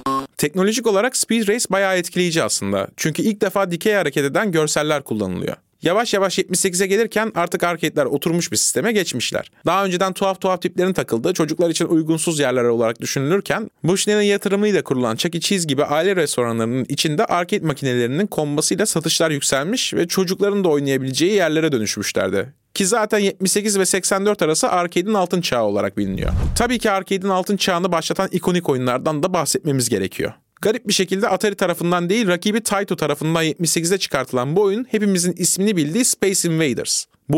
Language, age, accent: Turkish, 30-49, native